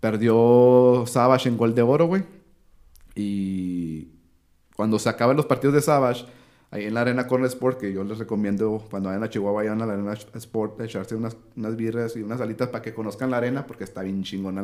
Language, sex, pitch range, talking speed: Spanish, male, 100-125 Hz, 205 wpm